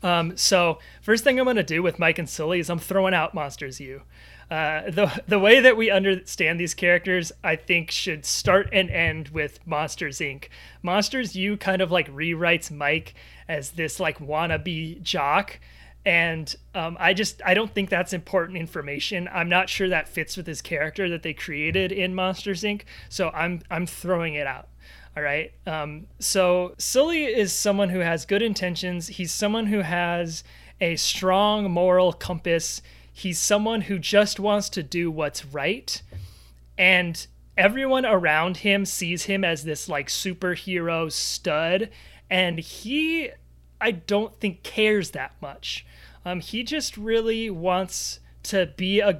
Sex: male